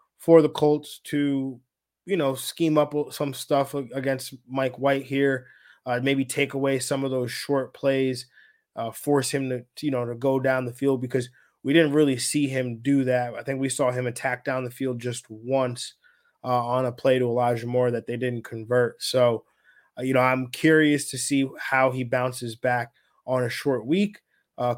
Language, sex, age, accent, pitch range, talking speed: English, male, 20-39, American, 125-150 Hz, 195 wpm